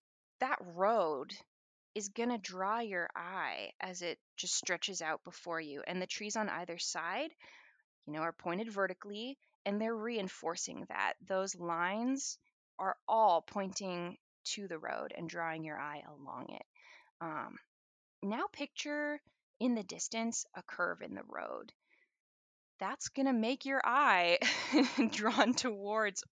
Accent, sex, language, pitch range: American, female, English, 185-260 Hz